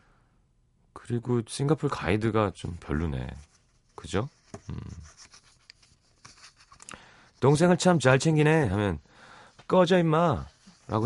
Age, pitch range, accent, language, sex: 30-49, 85-130 Hz, native, Korean, male